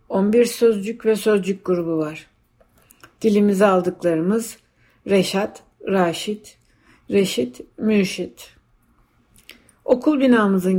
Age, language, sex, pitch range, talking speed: 60-79, Turkish, female, 180-215 Hz, 80 wpm